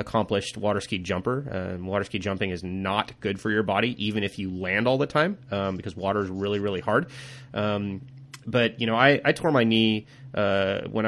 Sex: male